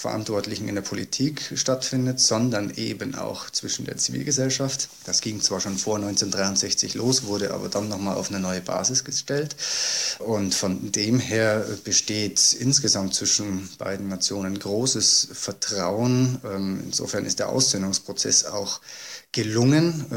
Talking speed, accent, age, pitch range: 130 wpm, German, 20-39, 100-125 Hz